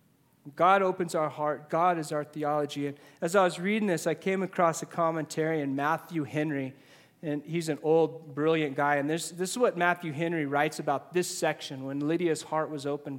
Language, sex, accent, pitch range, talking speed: English, male, American, 145-190 Hz, 200 wpm